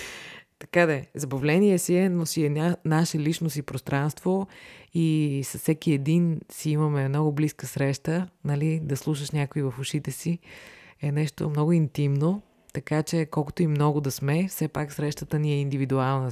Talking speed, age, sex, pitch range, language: 160 wpm, 20-39, female, 135-165 Hz, Bulgarian